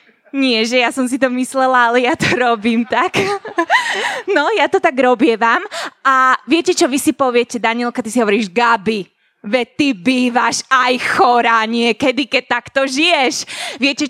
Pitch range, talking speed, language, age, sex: 235-320 Hz, 160 wpm, Slovak, 20-39, female